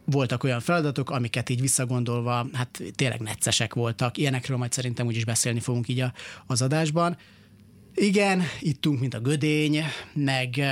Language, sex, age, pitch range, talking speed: Hungarian, male, 30-49, 120-140 Hz, 140 wpm